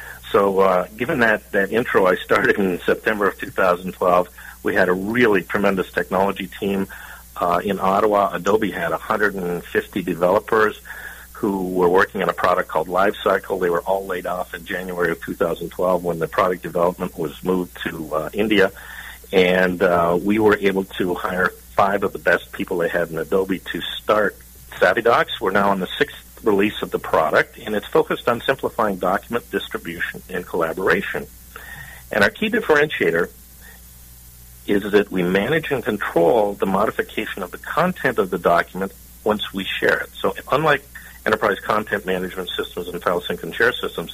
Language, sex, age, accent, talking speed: English, male, 50-69, American, 170 wpm